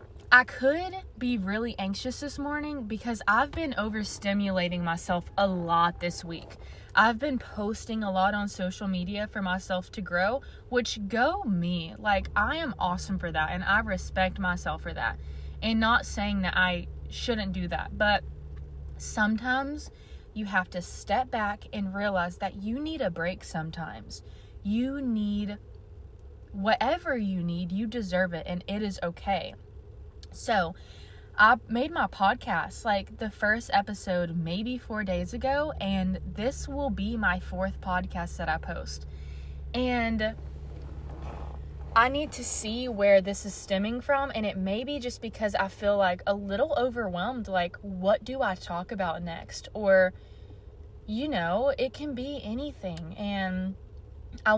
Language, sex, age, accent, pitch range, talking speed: English, female, 20-39, American, 170-230 Hz, 155 wpm